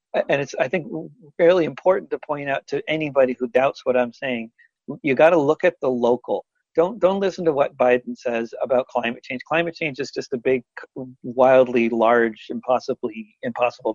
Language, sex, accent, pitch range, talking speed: English, male, American, 120-155 Hz, 185 wpm